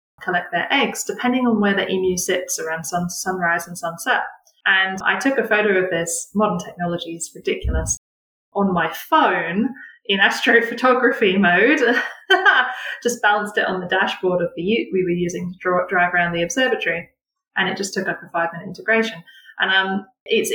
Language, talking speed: English, 170 wpm